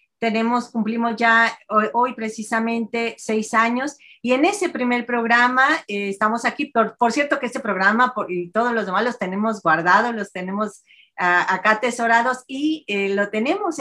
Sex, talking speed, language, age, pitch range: female, 170 wpm, Spanish, 40-59, 205-245 Hz